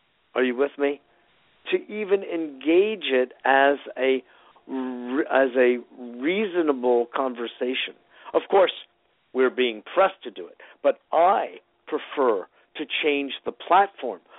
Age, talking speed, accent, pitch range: 50-69, 115 wpm, American, 120-160 Hz